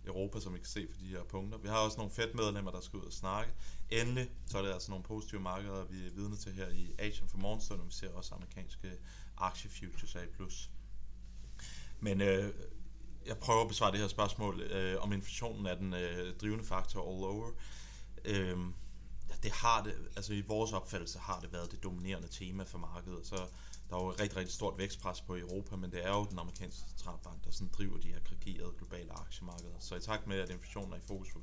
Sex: male